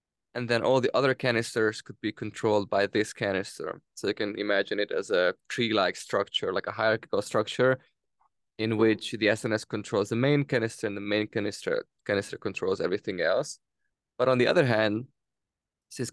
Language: English